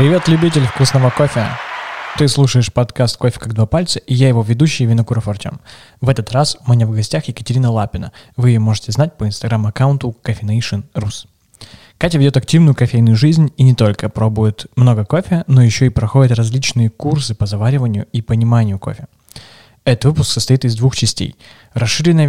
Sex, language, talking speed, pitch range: male, Russian, 165 wpm, 110-135 Hz